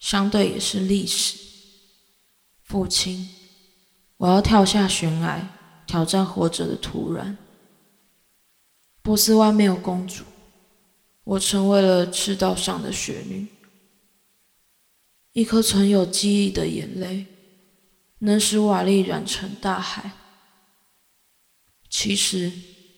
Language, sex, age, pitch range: Chinese, female, 20-39, 185-210 Hz